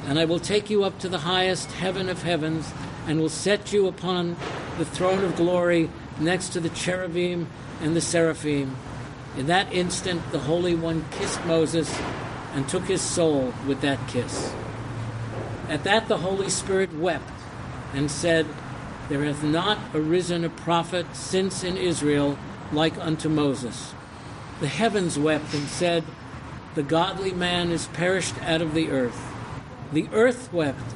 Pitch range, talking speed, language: 135-175 Hz, 155 wpm, English